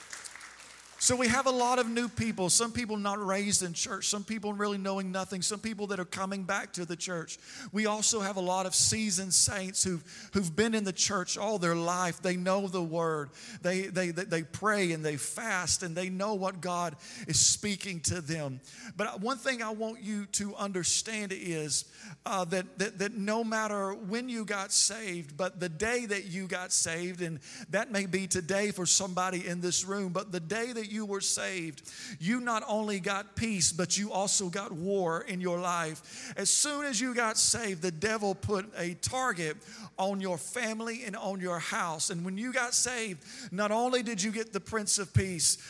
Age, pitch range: 40-59, 180-215 Hz